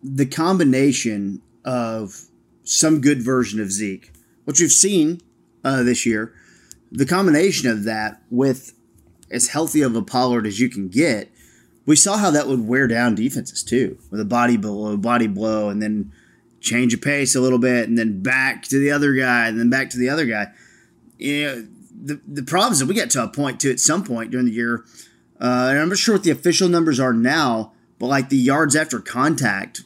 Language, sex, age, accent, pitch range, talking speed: English, male, 30-49, American, 115-145 Hz, 200 wpm